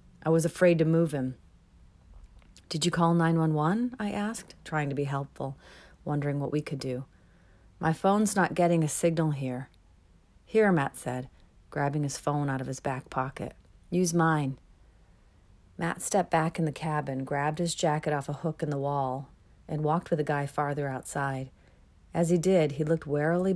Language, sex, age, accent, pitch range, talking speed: English, female, 40-59, American, 130-160 Hz, 175 wpm